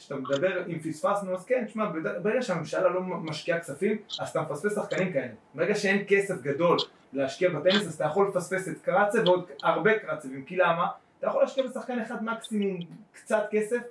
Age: 20-39